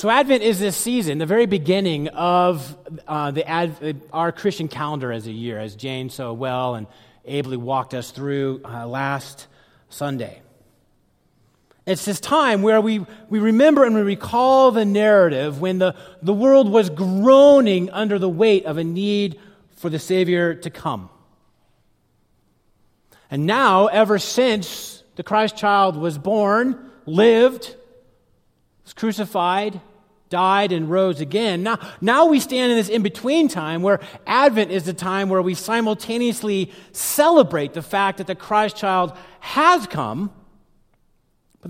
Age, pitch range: 30-49, 170-230 Hz